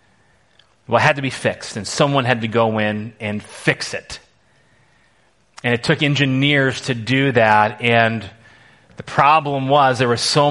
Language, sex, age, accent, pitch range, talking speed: English, male, 30-49, American, 110-145 Hz, 165 wpm